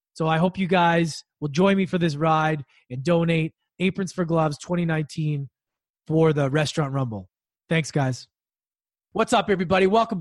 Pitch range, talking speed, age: 150-185 Hz, 160 wpm, 20-39